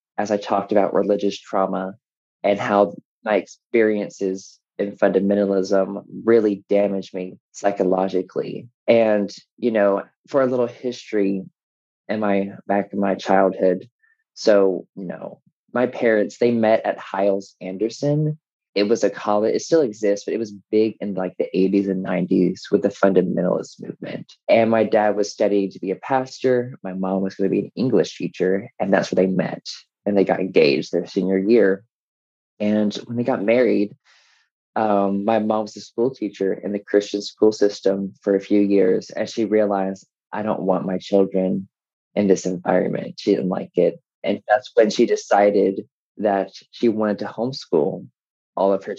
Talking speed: 170 wpm